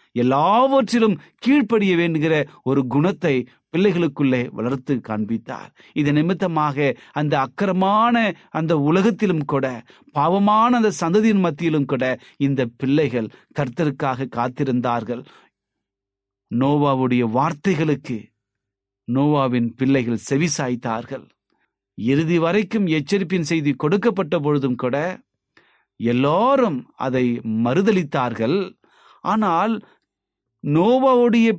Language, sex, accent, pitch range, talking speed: Tamil, male, native, 120-170 Hz, 65 wpm